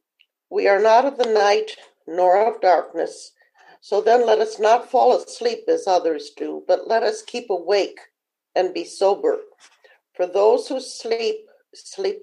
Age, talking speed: 50-69, 155 wpm